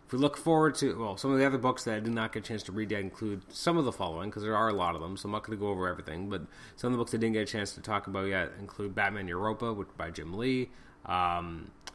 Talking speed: 310 wpm